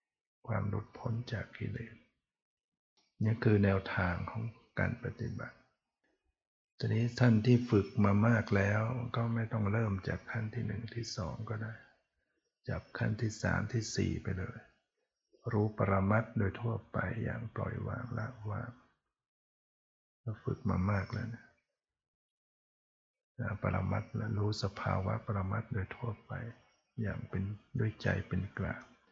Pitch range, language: 100-115 Hz, English